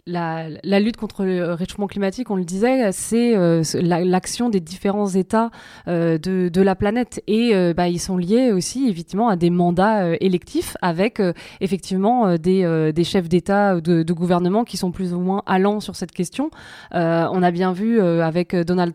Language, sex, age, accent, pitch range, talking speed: French, female, 20-39, French, 175-205 Hz, 205 wpm